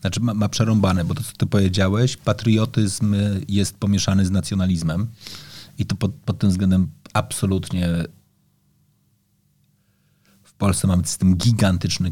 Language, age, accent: Polish, 30-49, native